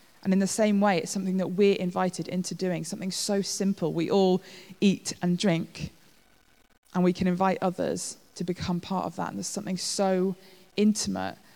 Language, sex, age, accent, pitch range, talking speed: English, female, 20-39, British, 165-185 Hz, 180 wpm